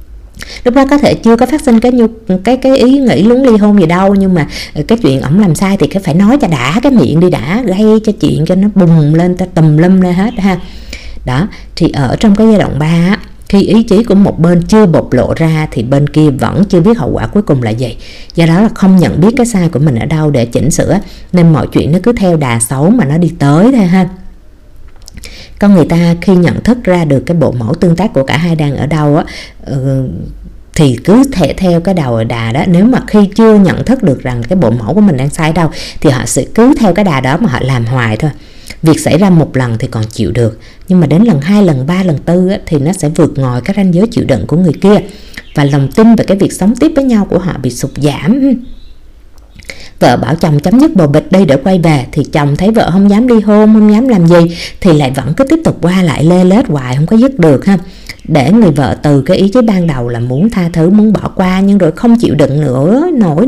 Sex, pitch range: female, 145-210 Hz